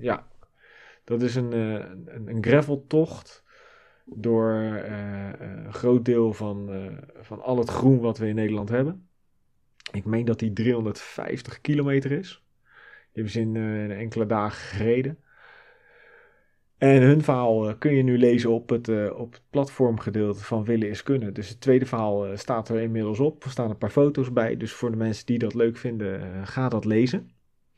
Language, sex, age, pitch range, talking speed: Dutch, male, 30-49, 110-135 Hz, 165 wpm